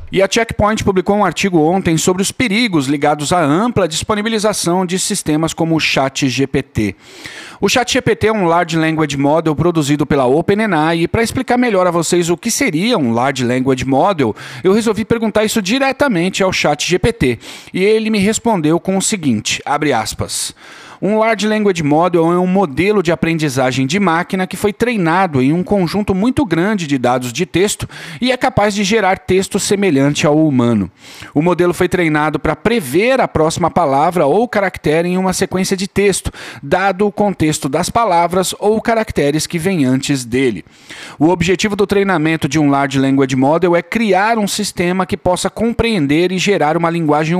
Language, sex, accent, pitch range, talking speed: Portuguese, male, Brazilian, 155-205 Hz, 175 wpm